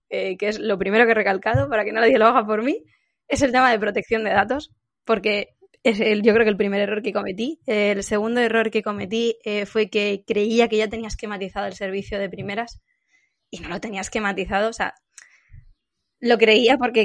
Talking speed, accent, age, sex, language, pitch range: 215 wpm, Spanish, 20-39, female, Spanish, 200-225 Hz